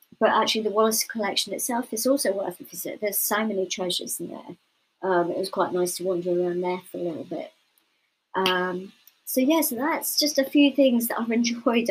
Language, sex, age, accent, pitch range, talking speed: English, male, 30-49, British, 185-220 Hz, 210 wpm